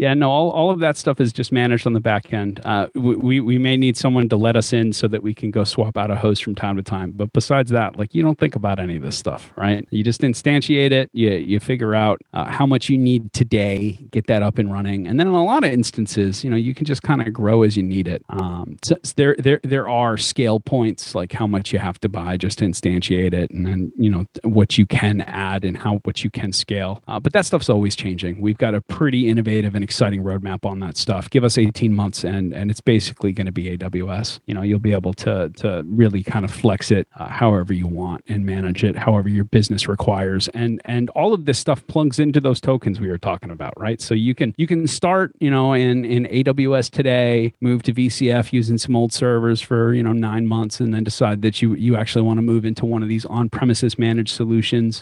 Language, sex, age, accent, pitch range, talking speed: English, male, 30-49, American, 105-125 Hz, 250 wpm